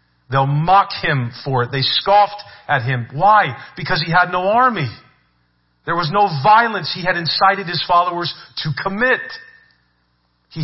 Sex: male